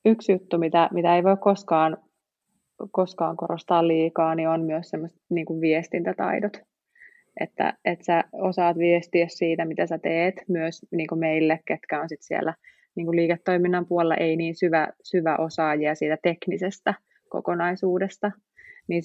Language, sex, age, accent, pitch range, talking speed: Finnish, female, 30-49, native, 165-200 Hz, 135 wpm